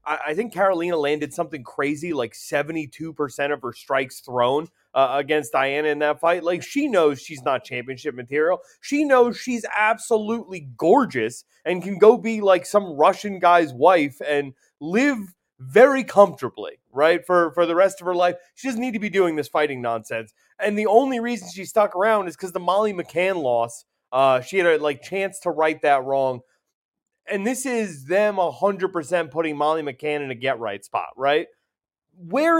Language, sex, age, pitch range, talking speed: English, male, 30-49, 150-210 Hz, 180 wpm